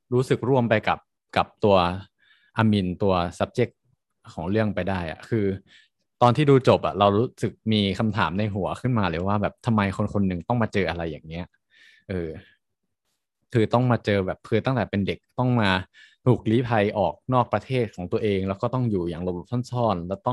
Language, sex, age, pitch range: Thai, male, 20-39, 95-120 Hz